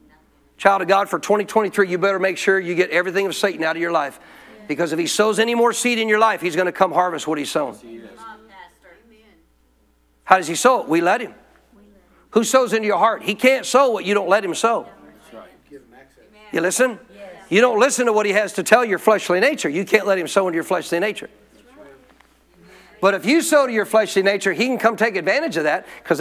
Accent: American